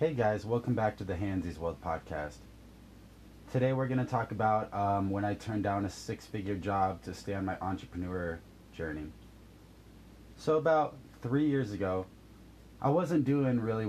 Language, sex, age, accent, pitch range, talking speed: English, male, 20-39, American, 100-115 Hz, 165 wpm